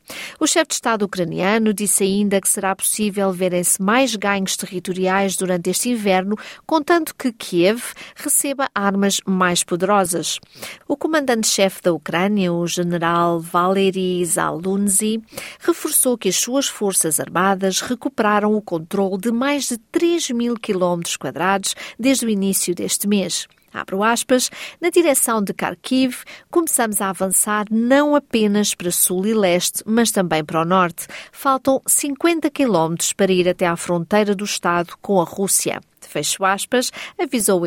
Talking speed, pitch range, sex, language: 140 wpm, 180-240 Hz, female, Portuguese